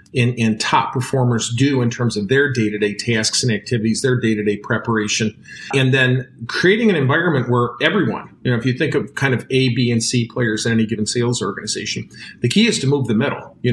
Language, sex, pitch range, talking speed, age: English, male, 115-140 Hz, 215 wpm, 40-59